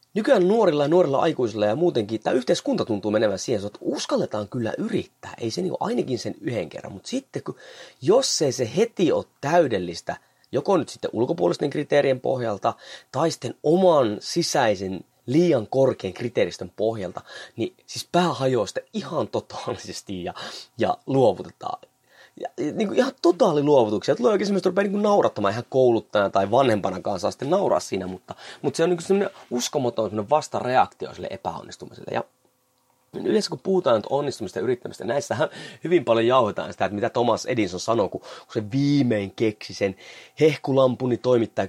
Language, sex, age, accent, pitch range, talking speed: Finnish, male, 30-49, native, 110-170 Hz, 165 wpm